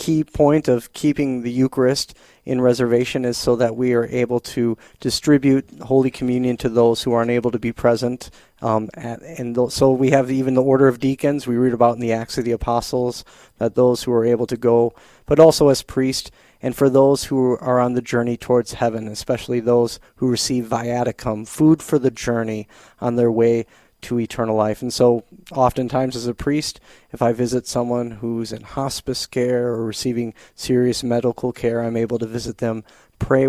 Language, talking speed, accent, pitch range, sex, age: English, 190 wpm, American, 115-130 Hz, male, 30-49